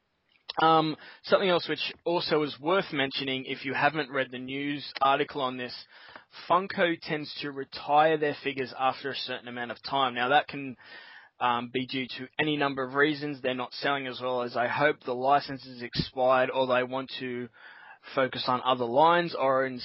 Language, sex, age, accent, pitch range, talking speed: English, male, 20-39, Australian, 125-150 Hz, 185 wpm